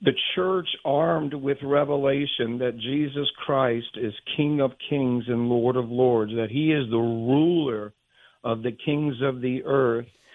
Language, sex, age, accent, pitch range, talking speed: English, male, 50-69, American, 130-155 Hz, 155 wpm